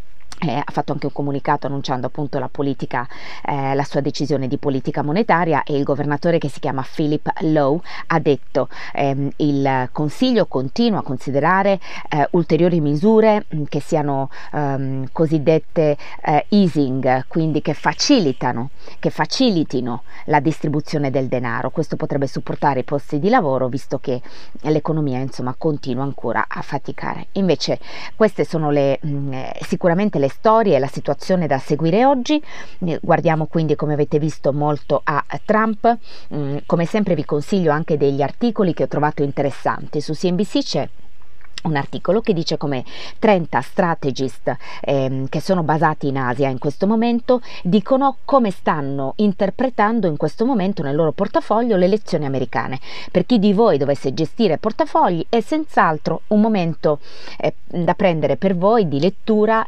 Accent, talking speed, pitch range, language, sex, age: native, 150 wpm, 140-200 Hz, Italian, female, 30-49